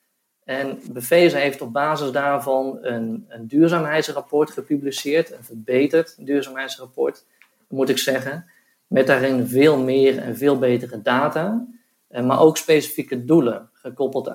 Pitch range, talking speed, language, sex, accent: 120-150 Hz, 120 wpm, Dutch, male, Dutch